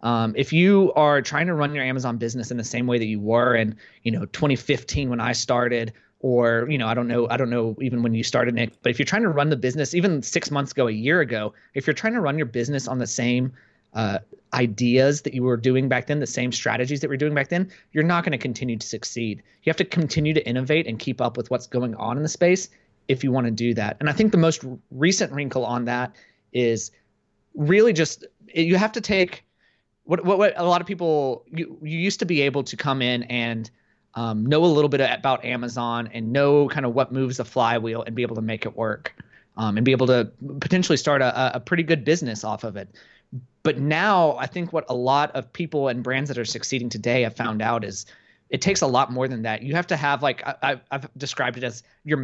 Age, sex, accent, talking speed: 30-49, male, American, 245 wpm